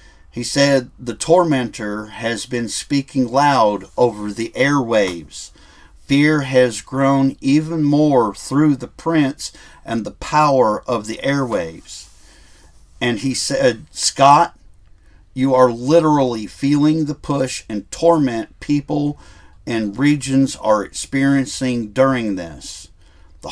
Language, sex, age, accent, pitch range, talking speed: English, male, 50-69, American, 110-140 Hz, 115 wpm